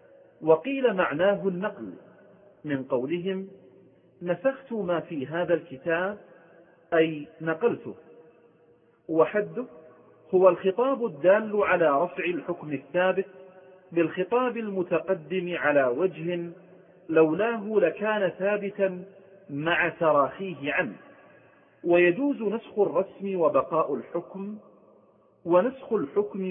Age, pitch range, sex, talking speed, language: 40-59, 165-200 Hz, male, 85 wpm, Arabic